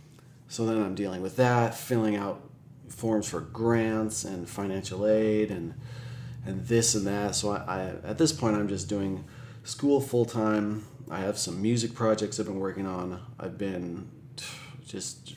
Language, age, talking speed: English, 30-49, 170 wpm